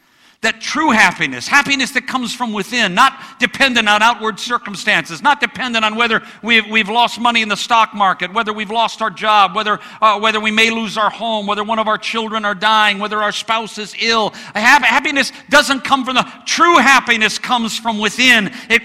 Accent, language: American, English